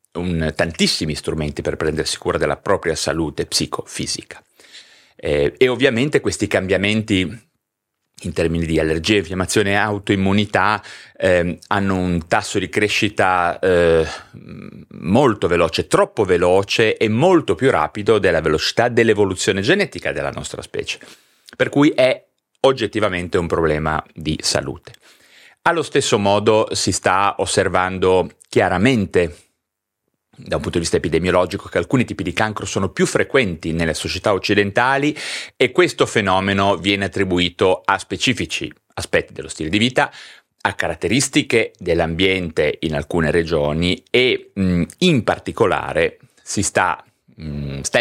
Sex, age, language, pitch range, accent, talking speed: male, 30-49, Italian, 85-110 Hz, native, 125 wpm